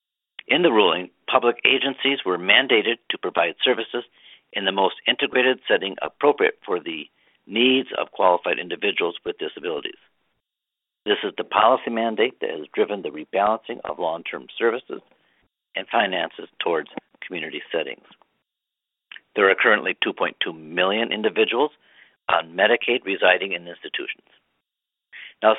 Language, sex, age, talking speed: English, male, 60-79, 125 wpm